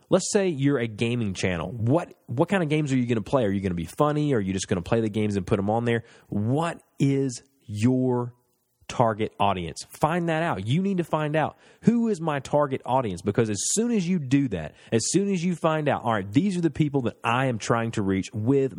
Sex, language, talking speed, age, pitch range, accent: male, English, 255 wpm, 30-49, 105-145 Hz, American